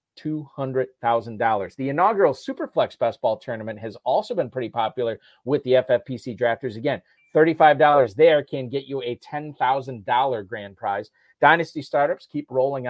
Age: 40-59